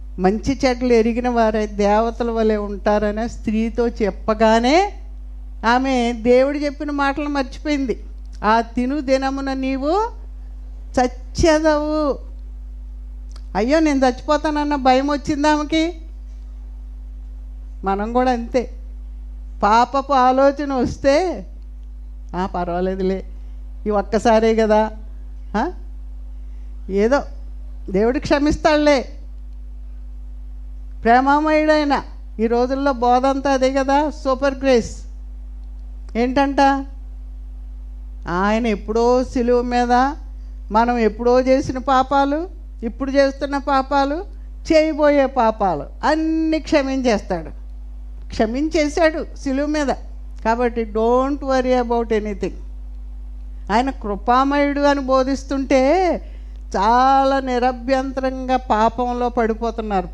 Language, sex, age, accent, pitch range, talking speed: Telugu, female, 50-69, native, 175-275 Hz, 80 wpm